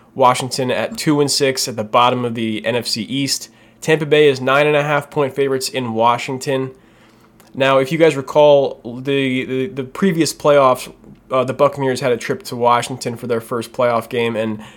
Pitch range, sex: 110-130 Hz, male